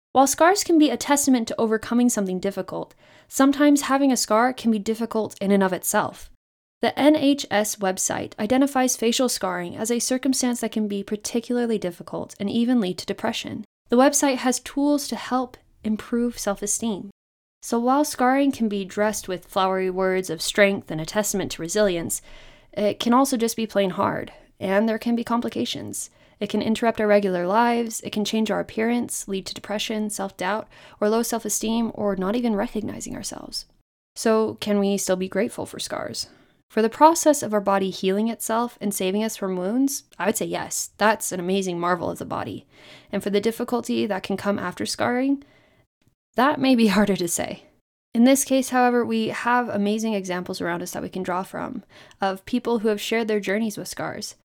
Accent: American